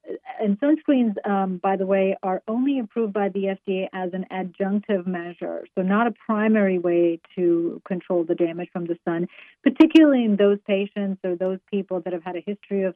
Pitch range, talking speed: 180-205 Hz, 190 wpm